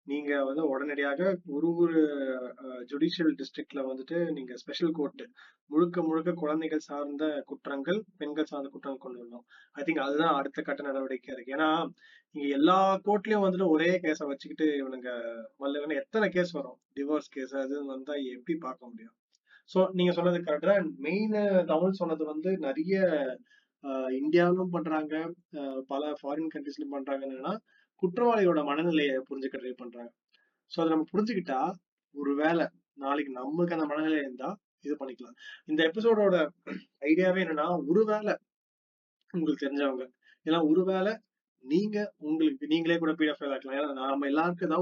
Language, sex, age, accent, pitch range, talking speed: Tamil, male, 30-49, native, 140-180 Hz, 130 wpm